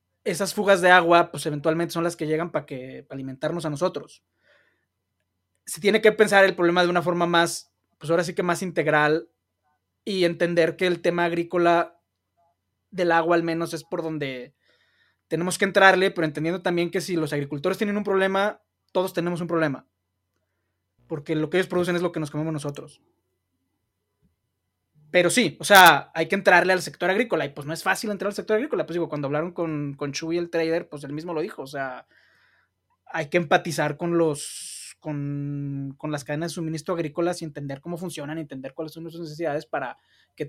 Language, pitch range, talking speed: Spanish, 150-180 Hz, 195 wpm